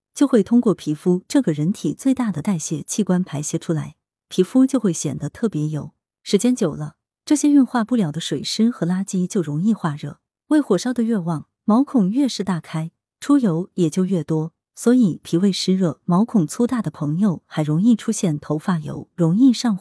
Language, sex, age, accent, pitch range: Chinese, female, 20-39, native, 160-235 Hz